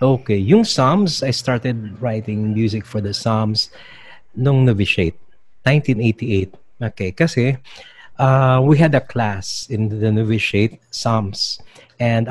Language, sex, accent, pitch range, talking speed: English, male, Filipino, 105-125 Hz, 115 wpm